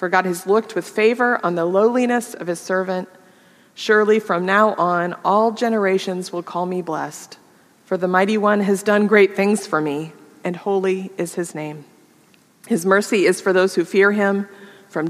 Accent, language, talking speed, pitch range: American, English, 185 wpm, 170-200 Hz